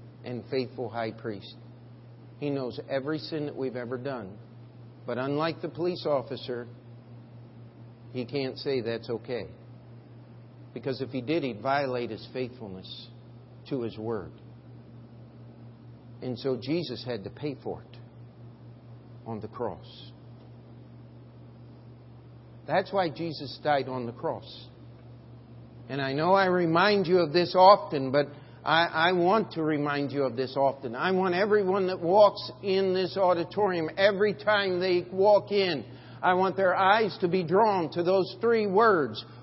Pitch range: 120-200 Hz